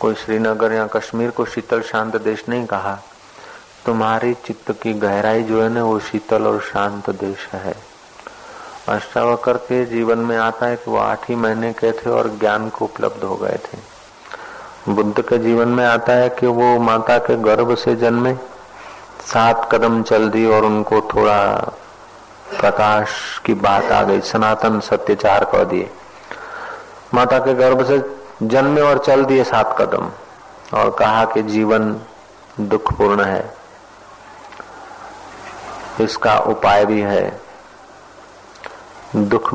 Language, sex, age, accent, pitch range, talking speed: Hindi, male, 40-59, native, 110-120 Hz, 115 wpm